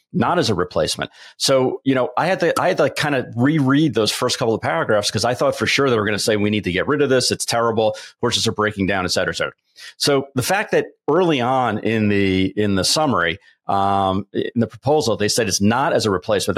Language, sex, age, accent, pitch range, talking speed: English, male, 40-59, American, 105-125 Hz, 255 wpm